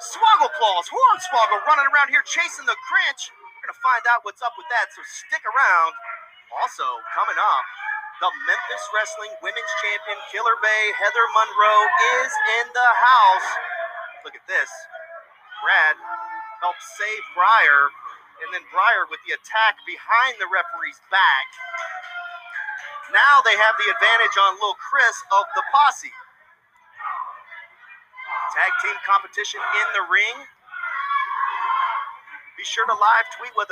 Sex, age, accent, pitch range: male, 30-49, American, 260-425 Hz